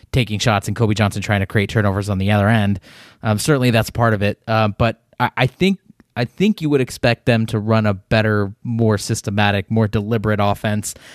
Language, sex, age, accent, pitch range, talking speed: English, male, 20-39, American, 110-140 Hz, 210 wpm